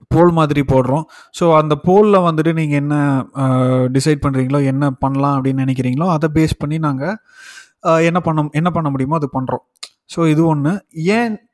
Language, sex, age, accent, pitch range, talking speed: Tamil, male, 20-39, native, 135-160 Hz, 155 wpm